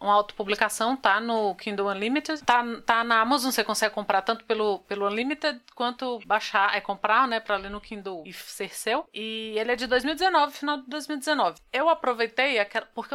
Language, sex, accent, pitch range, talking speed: Portuguese, female, Brazilian, 215-280 Hz, 185 wpm